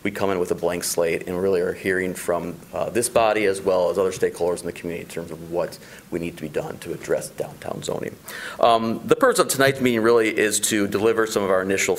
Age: 40-59